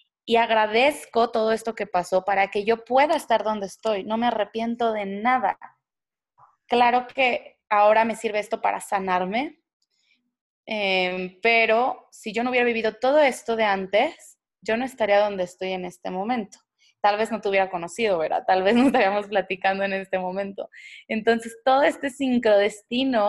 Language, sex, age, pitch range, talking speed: Spanish, female, 20-39, 205-245 Hz, 165 wpm